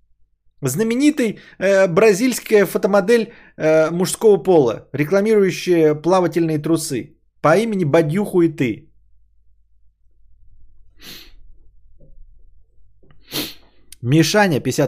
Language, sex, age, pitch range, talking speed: Bulgarian, male, 20-39, 115-170 Hz, 65 wpm